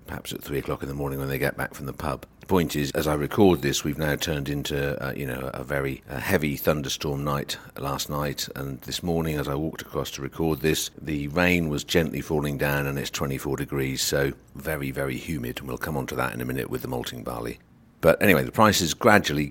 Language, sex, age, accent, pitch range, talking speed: English, male, 50-69, British, 70-85 Hz, 245 wpm